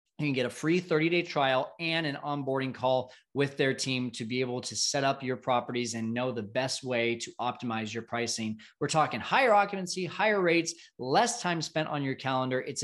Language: English